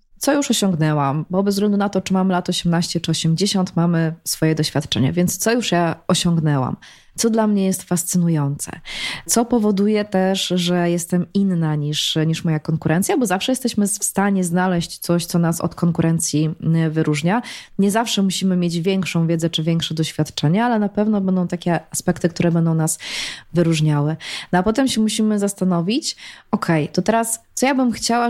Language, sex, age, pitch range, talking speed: Polish, female, 20-39, 170-210 Hz, 175 wpm